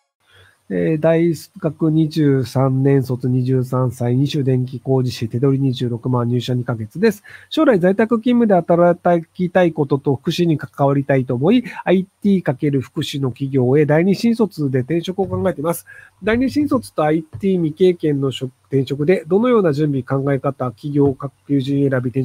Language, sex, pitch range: Japanese, male, 135-185 Hz